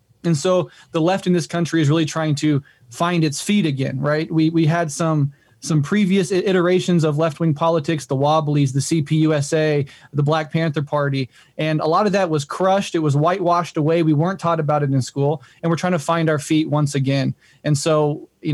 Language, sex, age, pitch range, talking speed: English, male, 20-39, 145-165 Hz, 205 wpm